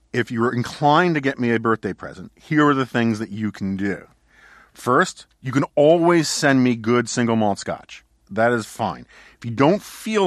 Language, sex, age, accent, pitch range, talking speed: English, male, 40-59, American, 105-135 Hz, 200 wpm